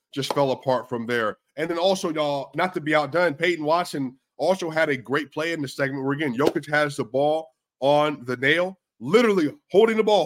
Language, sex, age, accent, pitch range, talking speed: English, male, 20-39, American, 130-185 Hz, 210 wpm